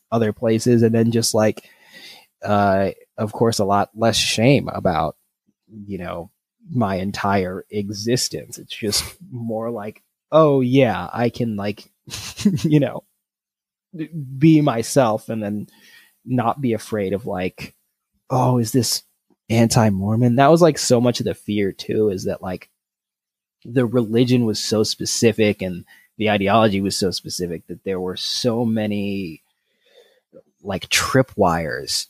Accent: American